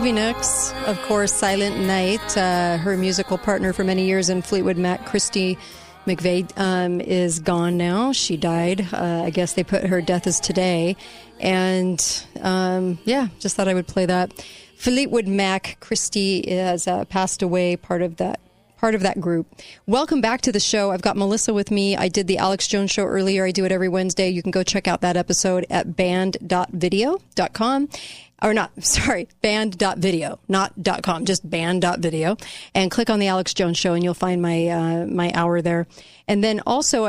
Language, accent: English, American